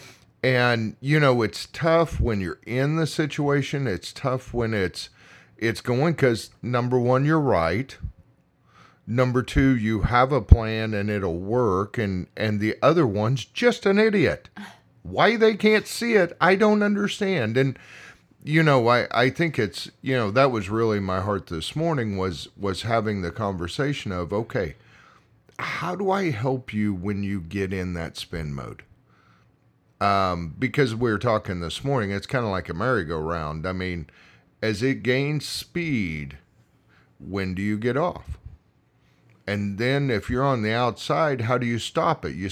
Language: English